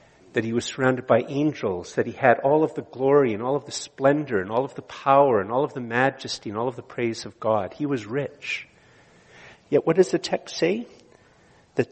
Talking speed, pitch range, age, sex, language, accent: 225 wpm, 115-145 Hz, 50-69, male, English, American